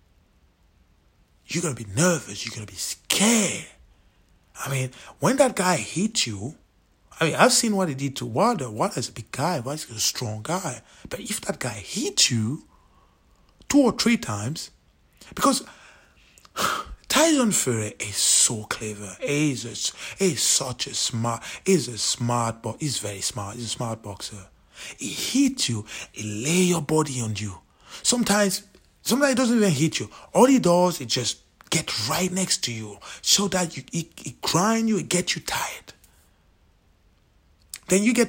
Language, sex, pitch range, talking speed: English, male, 105-170 Hz, 165 wpm